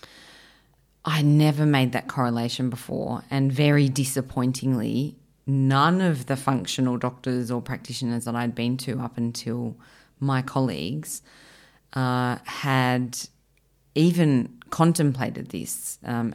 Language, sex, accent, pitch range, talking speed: English, female, Australian, 120-140 Hz, 110 wpm